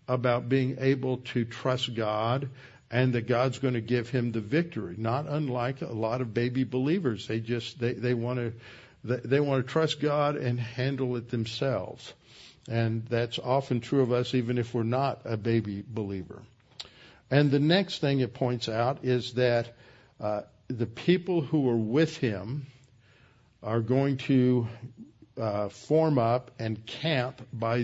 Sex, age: male, 60-79